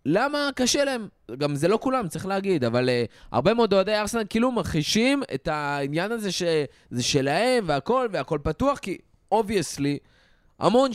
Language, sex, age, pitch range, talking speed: Hebrew, male, 20-39, 145-215 Hz, 155 wpm